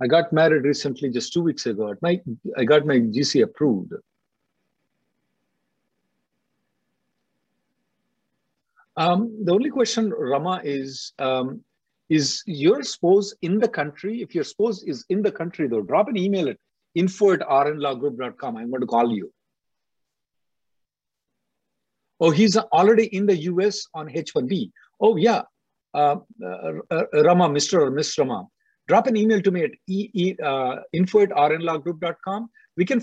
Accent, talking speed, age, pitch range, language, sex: Indian, 140 wpm, 50-69, 145-200 Hz, English, male